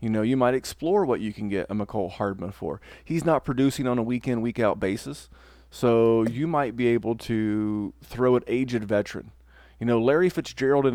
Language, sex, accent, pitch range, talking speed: English, male, American, 105-125 Hz, 195 wpm